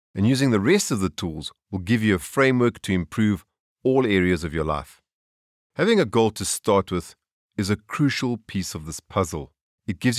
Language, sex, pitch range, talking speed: English, male, 85-115 Hz, 200 wpm